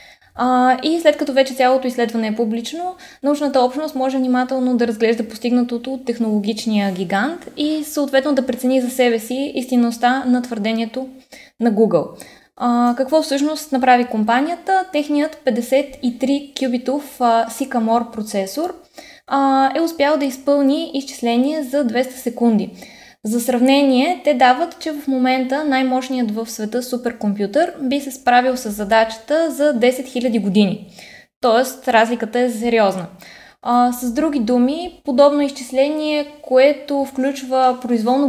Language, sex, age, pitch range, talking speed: Bulgarian, female, 20-39, 235-280 Hz, 130 wpm